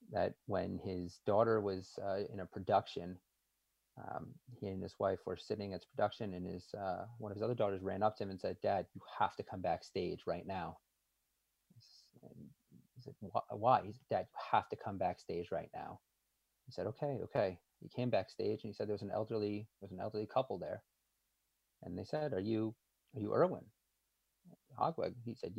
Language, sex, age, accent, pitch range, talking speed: English, male, 30-49, American, 100-120 Hz, 195 wpm